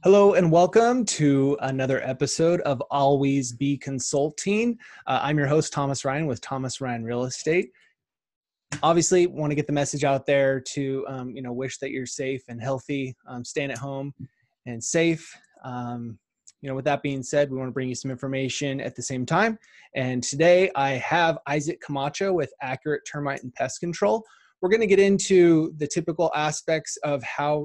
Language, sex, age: English, male, 20-39